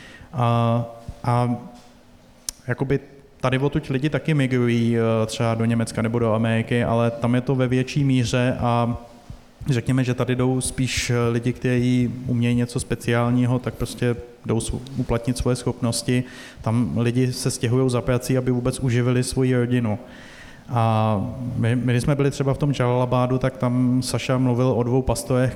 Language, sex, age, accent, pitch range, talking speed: Czech, male, 20-39, native, 115-125 Hz, 150 wpm